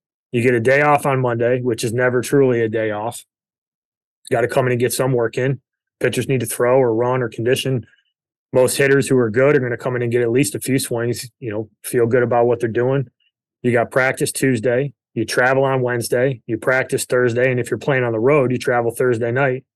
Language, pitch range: English, 120-135 Hz